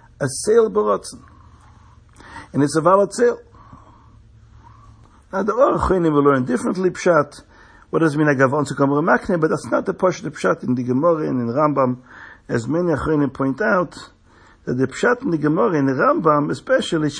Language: English